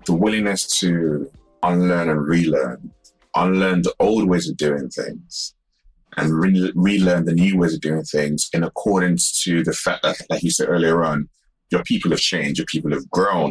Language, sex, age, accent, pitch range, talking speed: English, male, 30-49, British, 85-95 Hz, 180 wpm